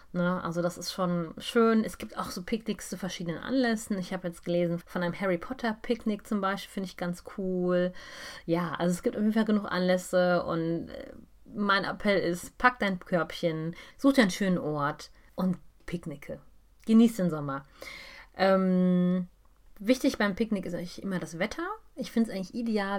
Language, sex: German, female